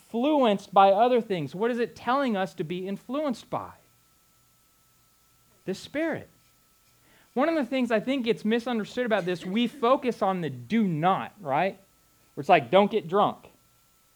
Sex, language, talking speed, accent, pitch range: male, English, 160 wpm, American, 185-250 Hz